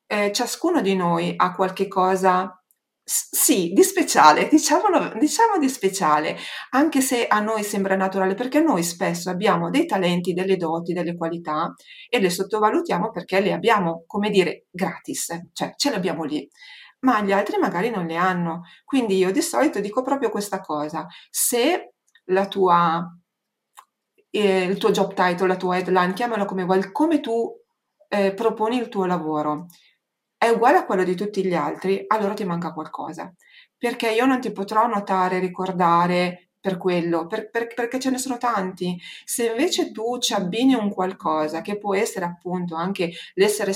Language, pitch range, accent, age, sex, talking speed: Italian, 175-220 Hz, native, 40-59, female, 160 wpm